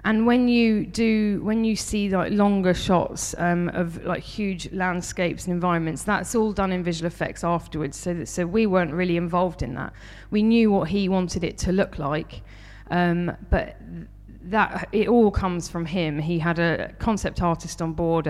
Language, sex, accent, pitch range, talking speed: English, female, British, 160-190 Hz, 185 wpm